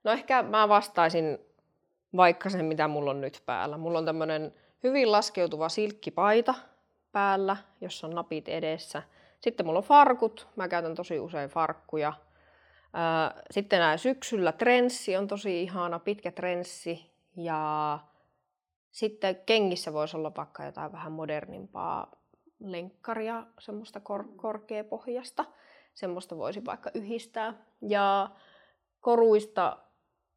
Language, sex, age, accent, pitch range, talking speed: Finnish, female, 20-39, native, 170-225 Hz, 115 wpm